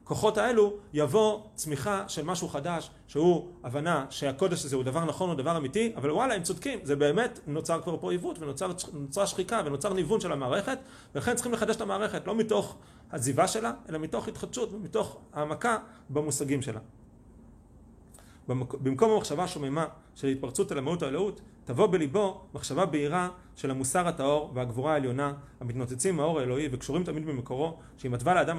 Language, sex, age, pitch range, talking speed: Hebrew, male, 30-49, 135-180 Hz, 155 wpm